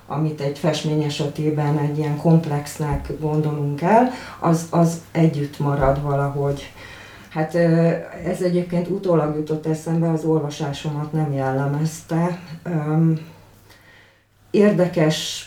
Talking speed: 95 wpm